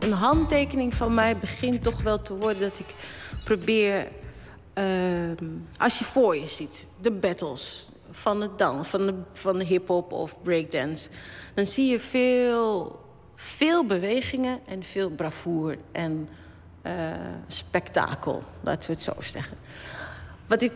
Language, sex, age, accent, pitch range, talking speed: Dutch, female, 30-49, Dutch, 185-250 Hz, 140 wpm